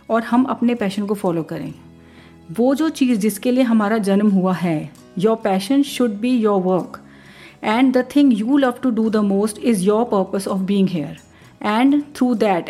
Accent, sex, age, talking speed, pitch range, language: native, female, 40-59, 190 wpm, 190-250 Hz, Hindi